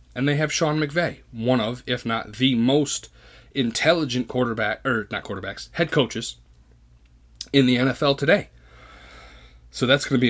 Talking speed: 155 wpm